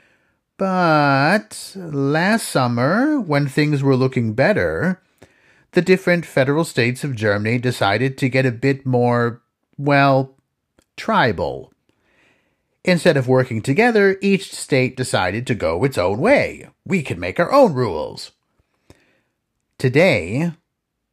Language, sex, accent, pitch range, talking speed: English, male, American, 105-140 Hz, 115 wpm